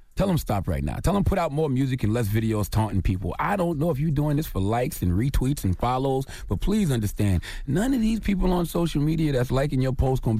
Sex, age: male, 30-49